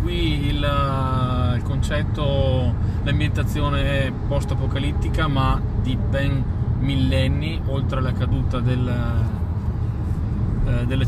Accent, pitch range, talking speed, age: native, 105-125 Hz, 90 wpm, 20-39